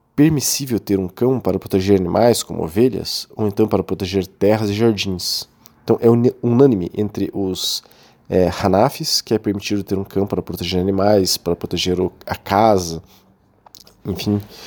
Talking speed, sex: 150 wpm, male